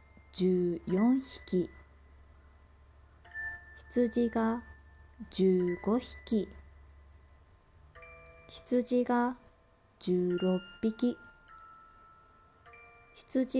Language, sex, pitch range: Japanese, female, 175-250 Hz